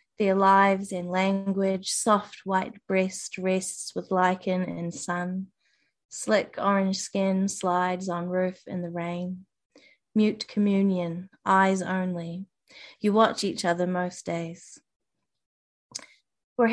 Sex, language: female, Korean